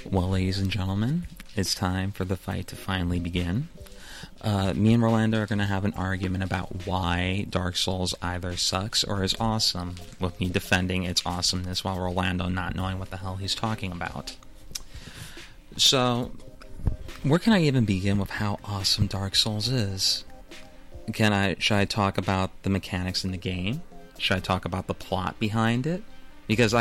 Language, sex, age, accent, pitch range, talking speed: English, male, 30-49, American, 95-110 Hz, 175 wpm